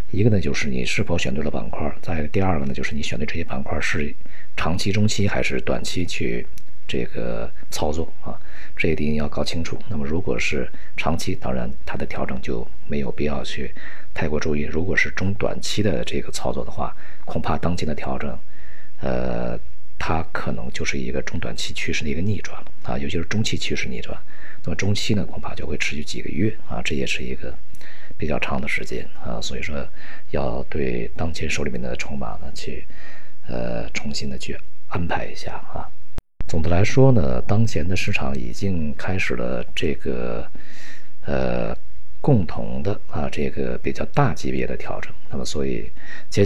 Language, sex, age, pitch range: Chinese, male, 50-69, 70-95 Hz